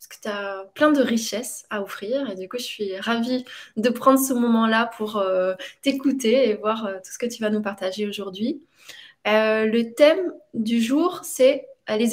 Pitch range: 230-275 Hz